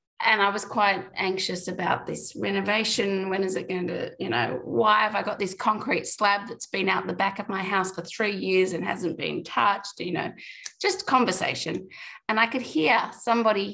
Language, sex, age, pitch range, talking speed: English, female, 30-49, 185-235 Hz, 200 wpm